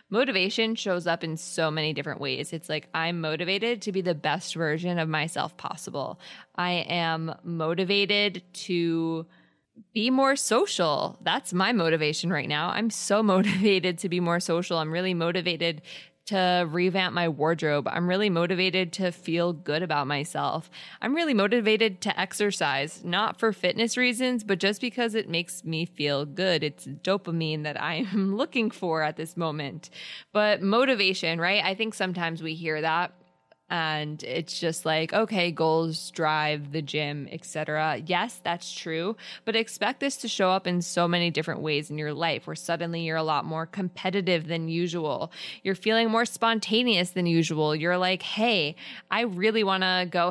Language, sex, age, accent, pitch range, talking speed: English, female, 20-39, American, 160-200 Hz, 170 wpm